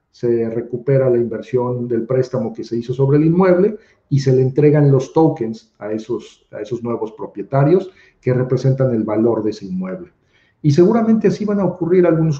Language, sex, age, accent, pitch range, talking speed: Spanish, male, 40-59, Mexican, 115-150 Hz, 185 wpm